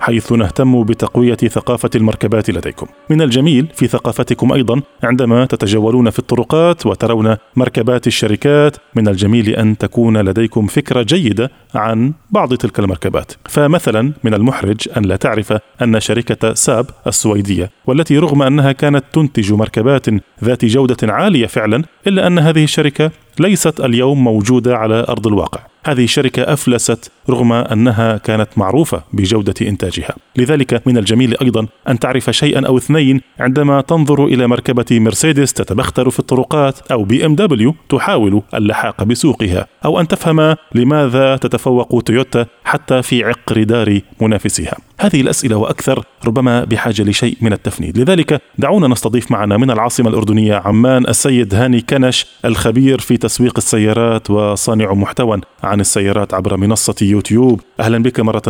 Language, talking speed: Arabic, 140 wpm